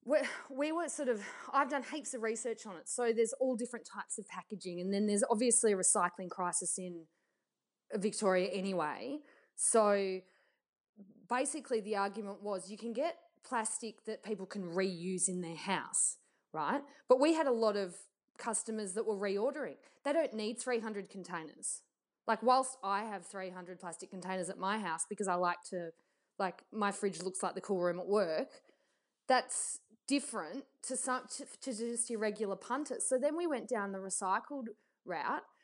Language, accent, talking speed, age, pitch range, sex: English, Australian, 170 wpm, 20-39, 195-255 Hz, female